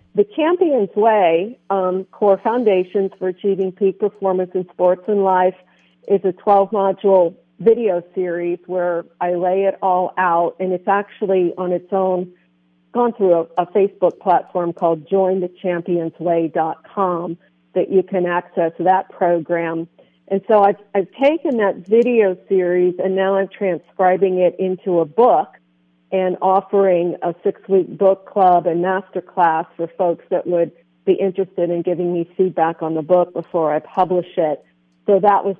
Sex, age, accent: female, 50-69, American